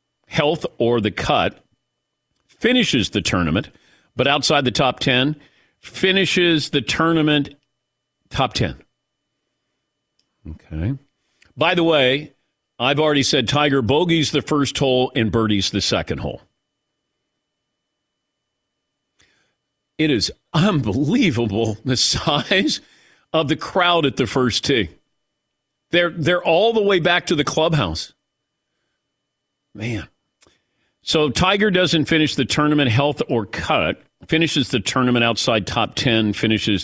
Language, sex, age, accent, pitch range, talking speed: English, male, 50-69, American, 110-155 Hz, 115 wpm